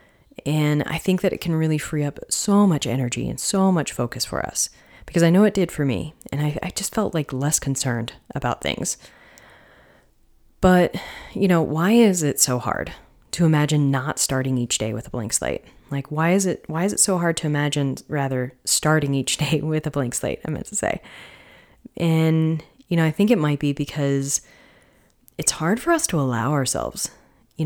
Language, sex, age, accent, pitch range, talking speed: English, female, 30-49, American, 135-170 Hz, 200 wpm